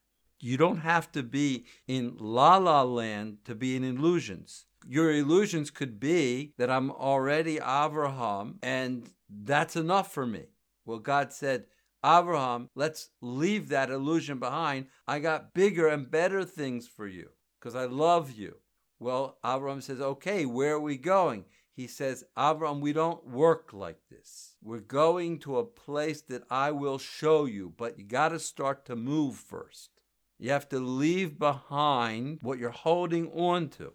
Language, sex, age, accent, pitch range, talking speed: English, male, 60-79, American, 125-160 Hz, 160 wpm